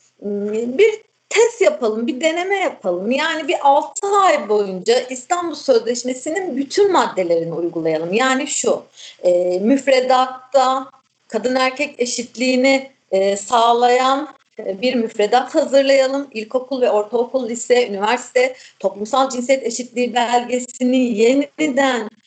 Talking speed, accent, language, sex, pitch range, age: 95 wpm, native, Turkish, female, 235-280 Hz, 40-59